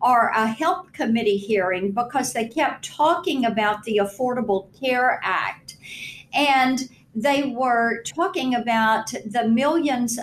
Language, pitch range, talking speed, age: English, 220-270 Hz, 125 wpm, 50-69